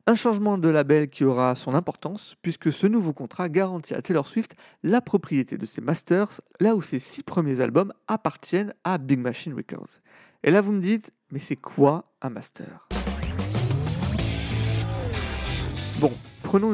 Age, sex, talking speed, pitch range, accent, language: 40-59, male, 160 wpm, 130-190 Hz, French, French